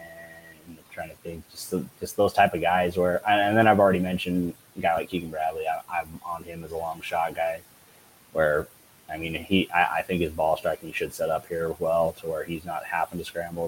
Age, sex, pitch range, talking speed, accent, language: 20-39, male, 85-100 Hz, 230 wpm, American, English